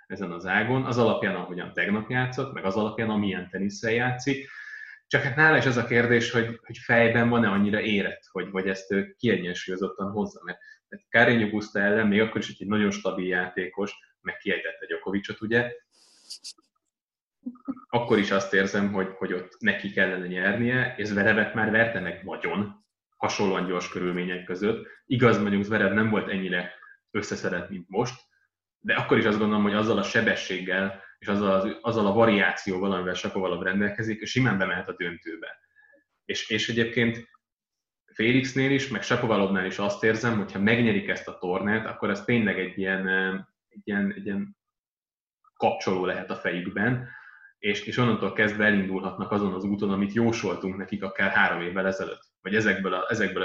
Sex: male